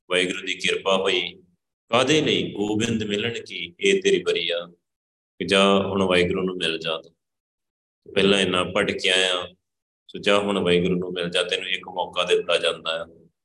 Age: 30-49